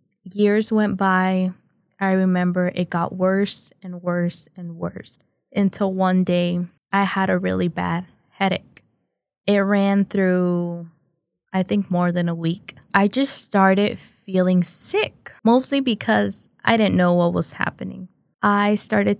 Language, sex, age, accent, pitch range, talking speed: English, female, 10-29, American, 180-205 Hz, 140 wpm